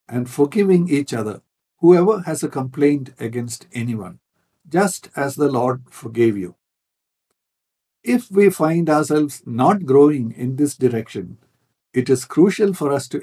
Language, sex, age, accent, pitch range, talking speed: English, male, 60-79, Indian, 125-155 Hz, 140 wpm